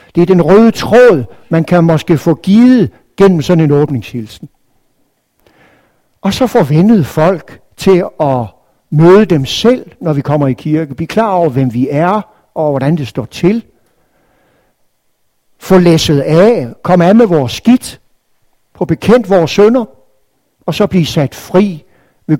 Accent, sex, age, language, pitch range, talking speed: native, male, 60-79, Danish, 135-185 Hz, 155 wpm